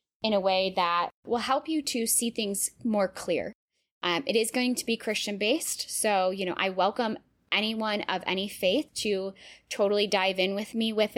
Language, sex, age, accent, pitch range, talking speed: English, female, 10-29, American, 185-230 Hz, 190 wpm